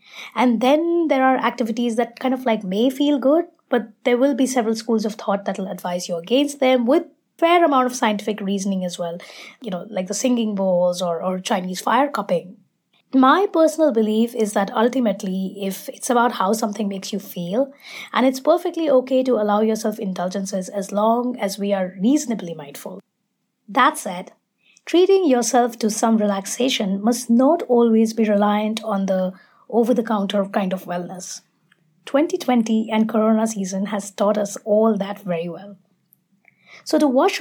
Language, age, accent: English, 20-39, Indian